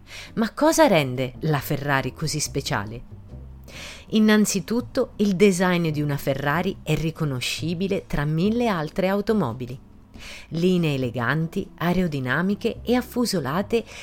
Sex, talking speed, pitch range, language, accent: female, 105 wpm, 130-200 Hz, Italian, native